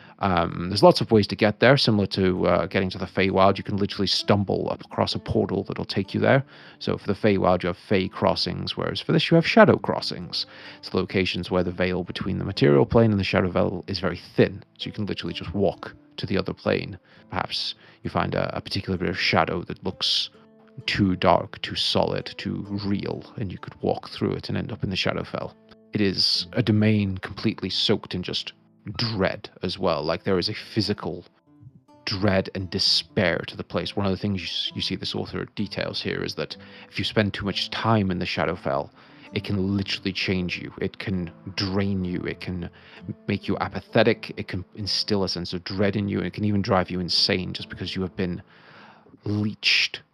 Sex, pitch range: male, 90-105 Hz